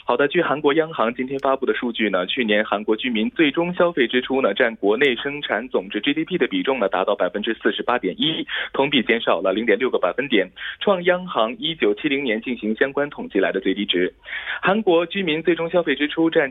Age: 20-39